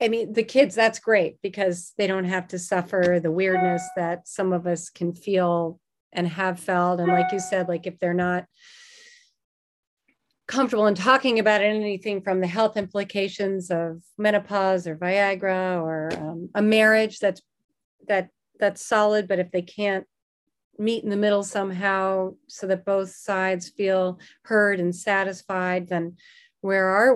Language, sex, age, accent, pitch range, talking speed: English, female, 40-59, American, 185-215 Hz, 160 wpm